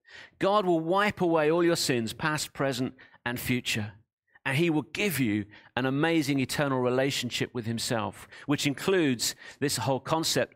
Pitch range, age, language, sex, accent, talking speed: 125-160 Hz, 40-59, English, male, British, 155 wpm